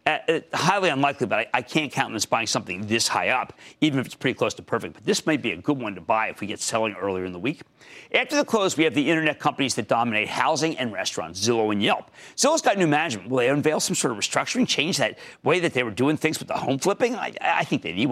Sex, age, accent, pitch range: male, 40-59, American, 120-195 Hz